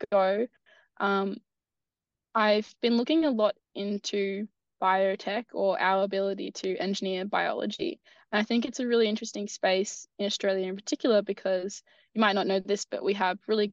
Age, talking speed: 10-29, 155 wpm